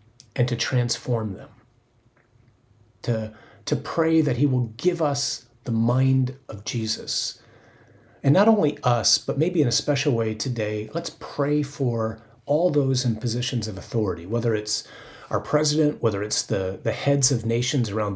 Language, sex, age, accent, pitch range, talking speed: English, male, 30-49, American, 115-145 Hz, 160 wpm